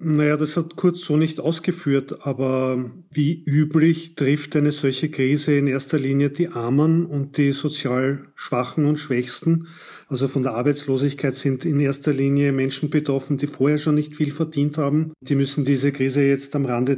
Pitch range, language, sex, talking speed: 130-145 Hz, German, male, 175 wpm